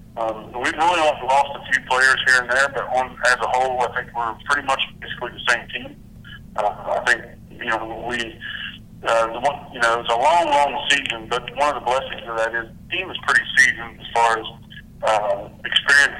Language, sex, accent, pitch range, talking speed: English, male, American, 115-125 Hz, 215 wpm